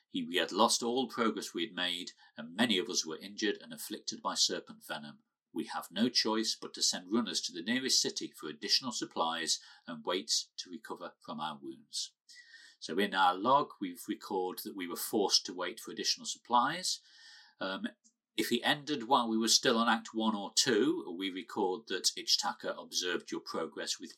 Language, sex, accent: English, male, British